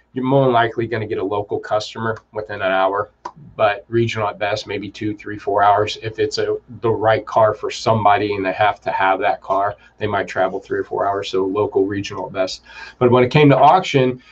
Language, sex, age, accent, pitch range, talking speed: English, male, 30-49, American, 110-135 Hz, 220 wpm